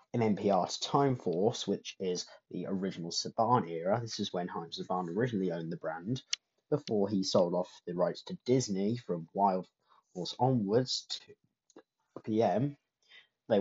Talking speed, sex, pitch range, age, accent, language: 155 wpm, male, 105-145 Hz, 30-49, British, English